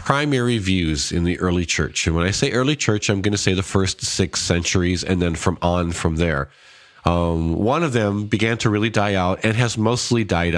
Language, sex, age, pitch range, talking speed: English, male, 40-59, 90-115 Hz, 220 wpm